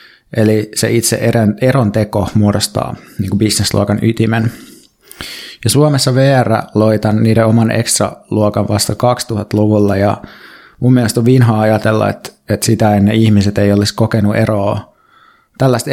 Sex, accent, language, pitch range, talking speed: male, native, Finnish, 105-115 Hz, 130 wpm